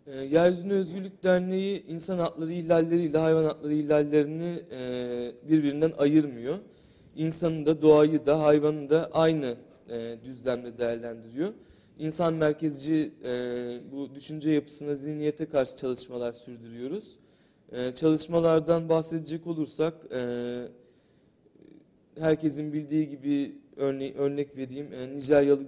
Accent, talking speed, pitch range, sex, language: native, 90 wpm, 125-155 Hz, male, Turkish